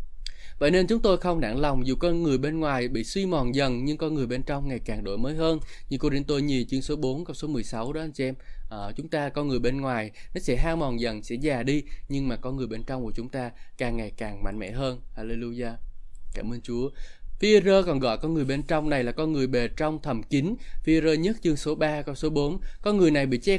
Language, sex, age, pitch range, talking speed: Vietnamese, male, 20-39, 125-165 Hz, 260 wpm